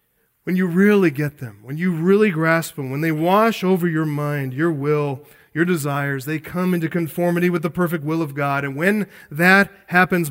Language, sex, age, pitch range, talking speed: English, male, 40-59, 150-205 Hz, 200 wpm